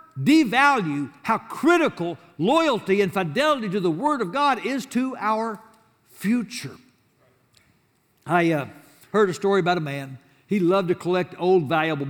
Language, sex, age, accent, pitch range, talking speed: English, male, 60-79, American, 150-210 Hz, 145 wpm